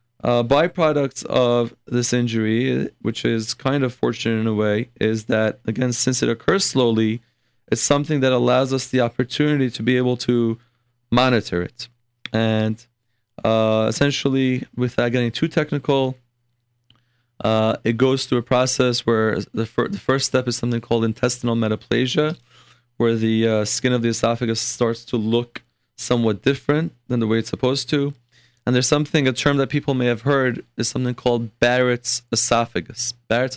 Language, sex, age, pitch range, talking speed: English, male, 20-39, 115-130 Hz, 165 wpm